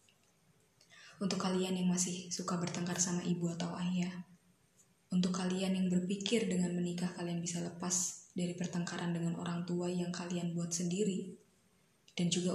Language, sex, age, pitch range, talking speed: Indonesian, female, 20-39, 175-195 Hz, 145 wpm